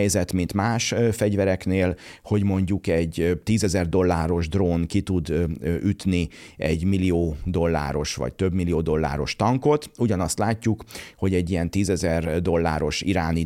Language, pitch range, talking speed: Hungarian, 80-95 Hz, 125 wpm